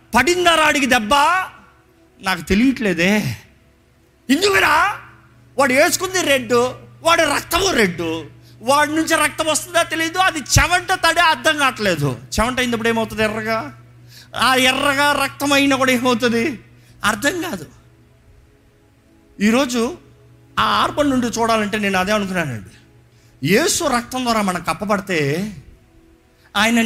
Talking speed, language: 105 wpm, Telugu